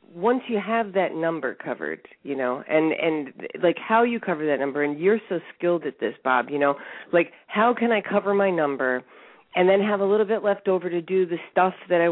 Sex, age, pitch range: female, 40-59, 145-195 Hz